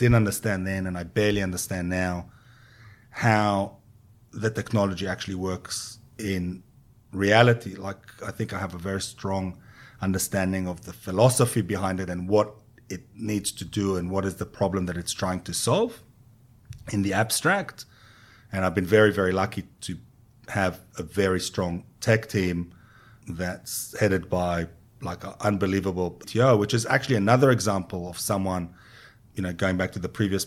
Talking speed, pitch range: 160 wpm, 95-115 Hz